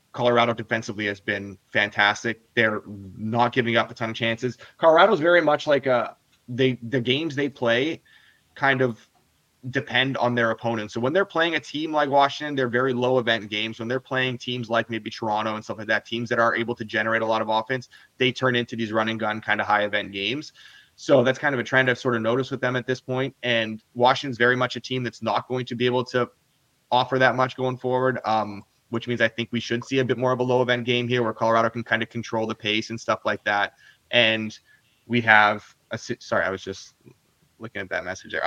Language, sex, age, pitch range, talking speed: English, male, 20-39, 110-125 Hz, 235 wpm